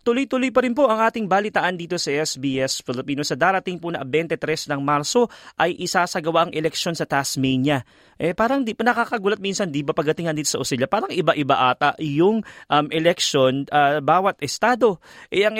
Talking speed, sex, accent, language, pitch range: 175 wpm, male, native, Filipino, 145-200 Hz